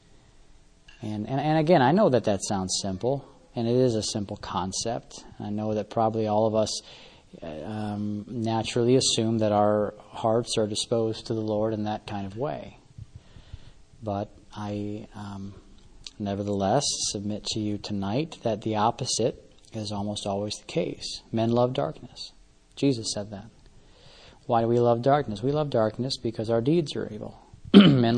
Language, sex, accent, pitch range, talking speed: English, male, American, 105-120 Hz, 160 wpm